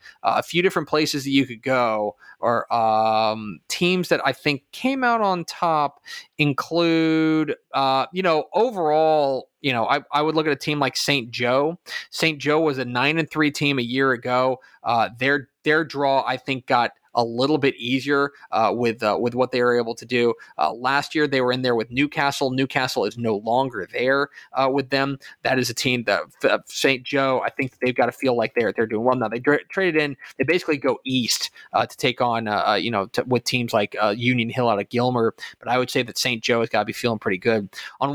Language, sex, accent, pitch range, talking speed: English, male, American, 125-155 Hz, 230 wpm